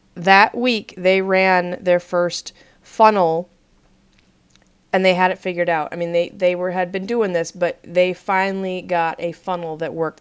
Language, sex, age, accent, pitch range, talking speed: English, female, 30-49, American, 170-205 Hz, 175 wpm